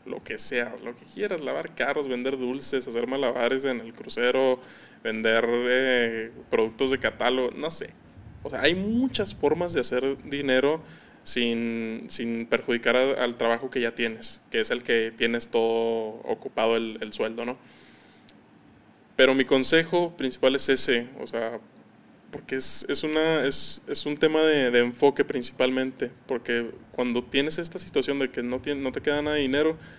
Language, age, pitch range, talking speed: Spanish, 20-39, 120-140 Hz, 170 wpm